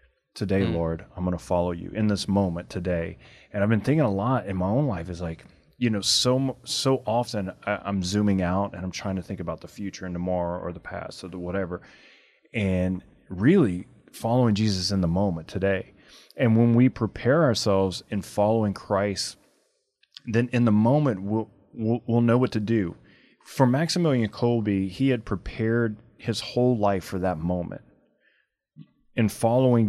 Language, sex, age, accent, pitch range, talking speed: English, male, 30-49, American, 95-120 Hz, 175 wpm